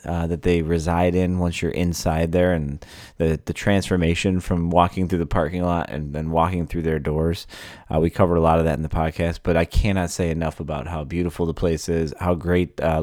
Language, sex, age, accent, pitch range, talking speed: English, male, 30-49, American, 80-95 Hz, 225 wpm